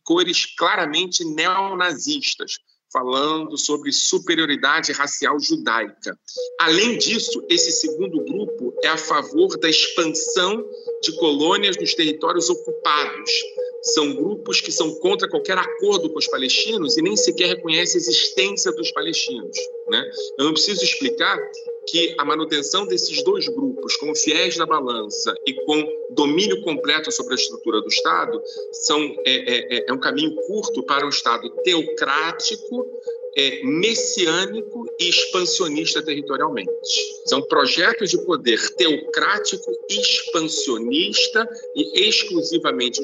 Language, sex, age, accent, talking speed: Portuguese, male, 40-59, Brazilian, 125 wpm